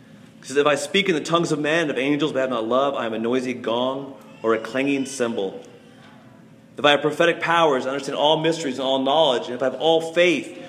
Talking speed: 240 wpm